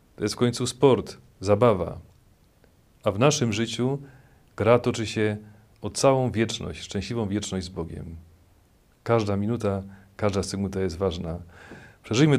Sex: male